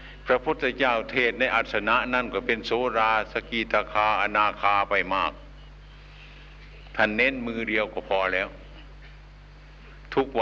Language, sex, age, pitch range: Thai, male, 60-79, 95-115 Hz